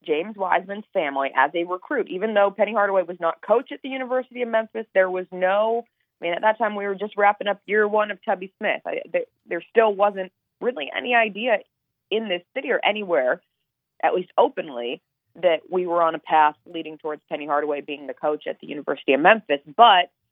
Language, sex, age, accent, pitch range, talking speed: English, female, 20-39, American, 145-210 Hz, 205 wpm